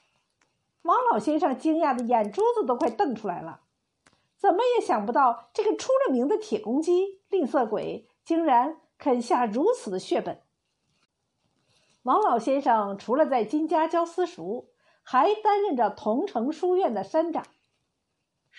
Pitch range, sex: 235-350 Hz, female